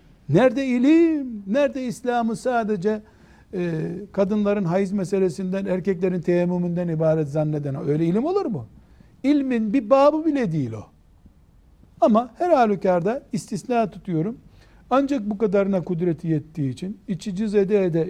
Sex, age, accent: male, 60-79, native